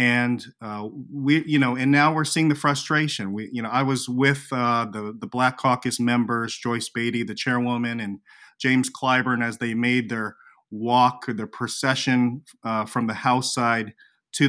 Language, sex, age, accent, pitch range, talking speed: English, male, 30-49, American, 115-135 Hz, 180 wpm